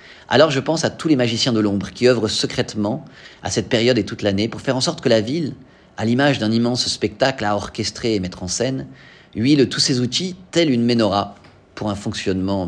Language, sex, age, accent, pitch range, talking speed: French, male, 30-49, French, 105-145 Hz, 220 wpm